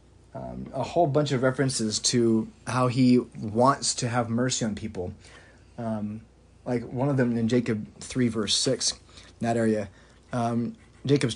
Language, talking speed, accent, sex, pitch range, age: English, 160 wpm, American, male, 110-135 Hz, 30-49